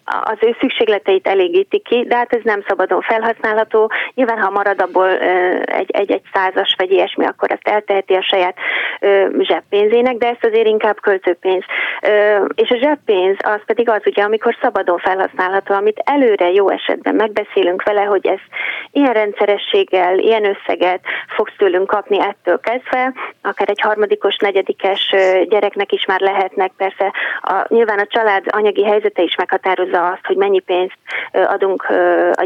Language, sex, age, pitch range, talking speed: Hungarian, female, 30-49, 190-235 Hz, 150 wpm